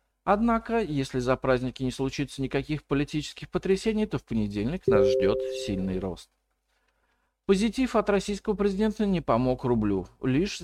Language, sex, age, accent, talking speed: Russian, male, 50-69, native, 135 wpm